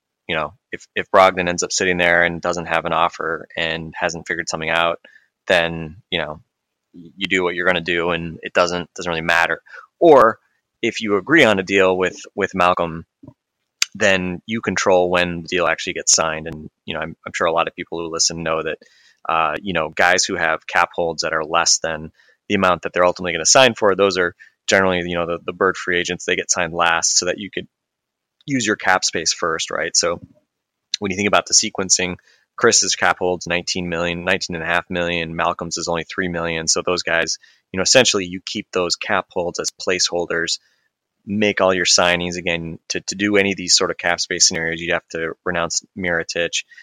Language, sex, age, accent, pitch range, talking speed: English, male, 20-39, American, 85-90 Hz, 215 wpm